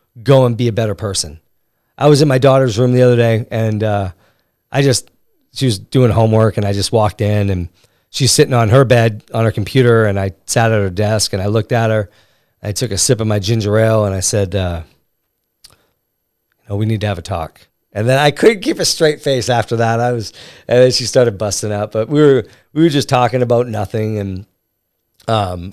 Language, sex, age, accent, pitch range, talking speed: English, male, 40-59, American, 105-125 Hz, 225 wpm